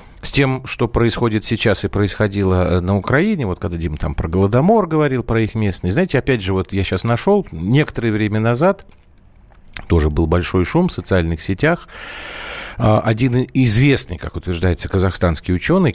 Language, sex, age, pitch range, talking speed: Russian, male, 40-59, 85-125 Hz, 160 wpm